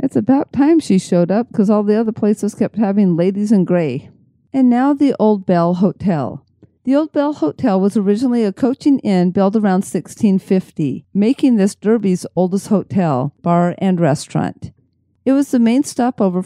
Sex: female